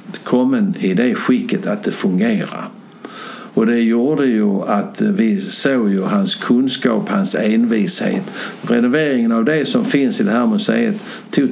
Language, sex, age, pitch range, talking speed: Swedish, male, 60-79, 160-225 Hz, 150 wpm